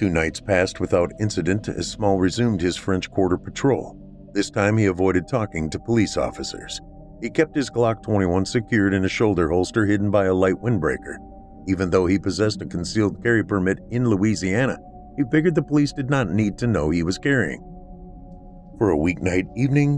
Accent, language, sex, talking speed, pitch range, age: American, English, male, 185 wpm, 90-120 Hz, 50-69